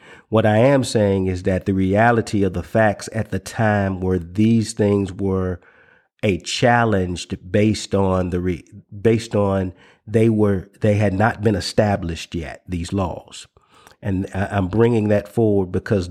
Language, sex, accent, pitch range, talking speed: English, male, American, 95-115 Hz, 155 wpm